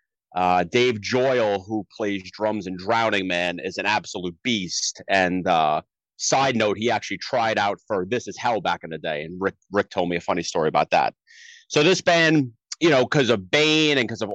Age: 30-49